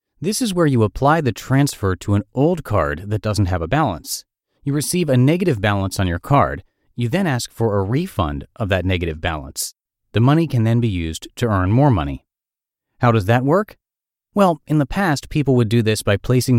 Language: English